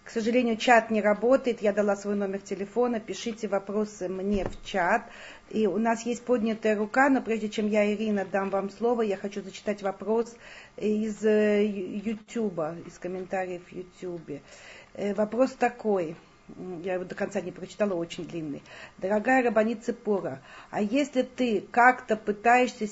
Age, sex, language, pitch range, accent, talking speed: 40-59, female, Russian, 195-235 Hz, native, 150 wpm